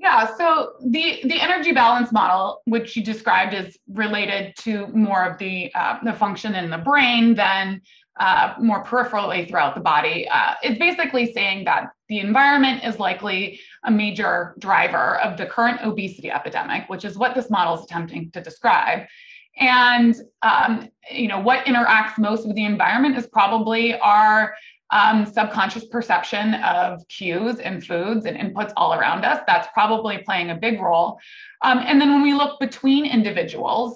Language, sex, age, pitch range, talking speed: English, female, 20-39, 190-245 Hz, 165 wpm